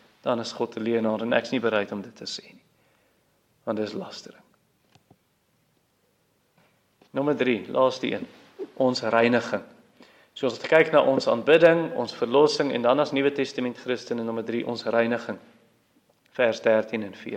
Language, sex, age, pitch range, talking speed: English, male, 40-59, 120-155 Hz, 165 wpm